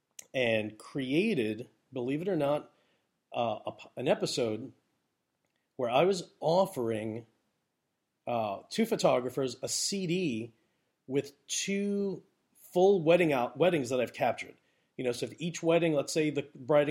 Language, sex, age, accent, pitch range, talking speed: English, male, 40-59, American, 125-165 Hz, 135 wpm